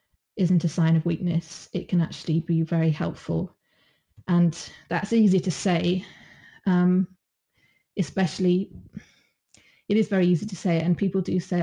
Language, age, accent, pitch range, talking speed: English, 20-39, British, 165-185 Hz, 150 wpm